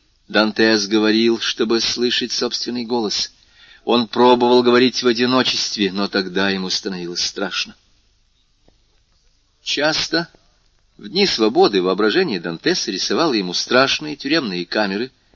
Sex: male